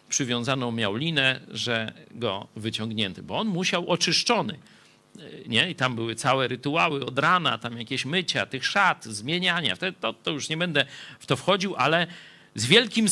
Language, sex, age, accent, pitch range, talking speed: Polish, male, 50-69, native, 115-175 Hz, 160 wpm